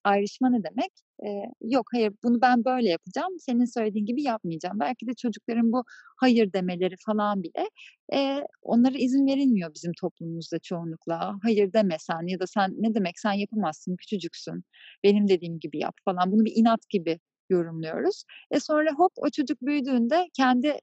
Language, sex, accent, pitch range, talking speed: Turkish, female, native, 195-255 Hz, 160 wpm